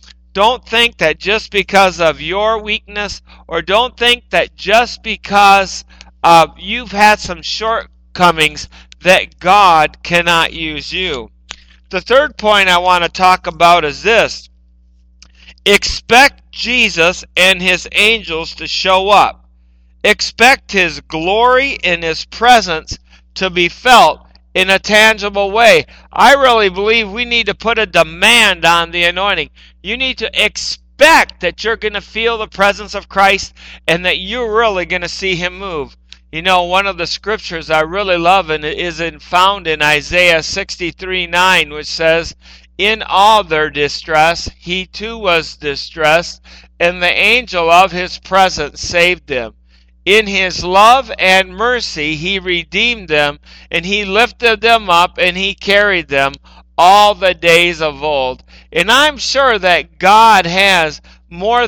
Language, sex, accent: English, male, American